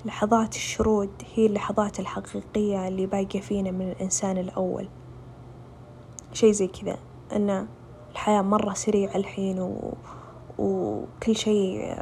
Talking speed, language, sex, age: 110 wpm, Arabic, female, 20-39